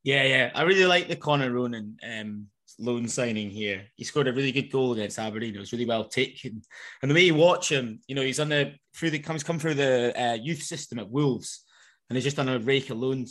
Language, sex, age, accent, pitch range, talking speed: English, male, 20-39, British, 115-140 Hz, 250 wpm